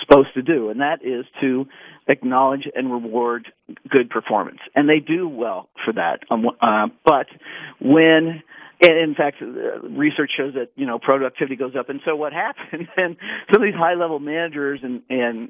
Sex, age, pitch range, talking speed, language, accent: male, 50-69, 130-180 Hz, 170 wpm, English, American